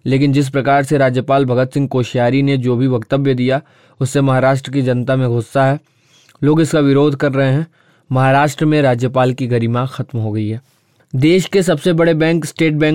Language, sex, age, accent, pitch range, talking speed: Hindi, male, 20-39, native, 130-160 Hz, 170 wpm